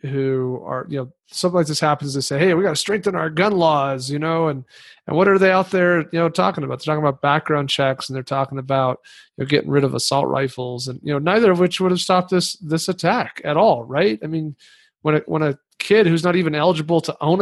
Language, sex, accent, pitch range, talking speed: English, male, American, 145-175 Hz, 260 wpm